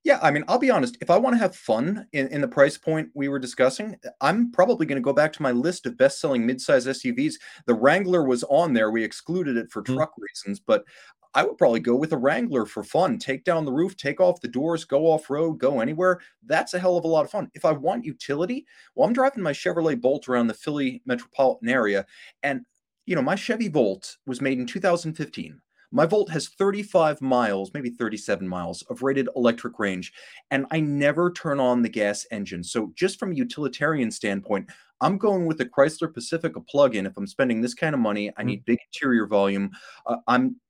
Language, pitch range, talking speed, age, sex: English, 120-180 Hz, 220 wpm, 30-49, male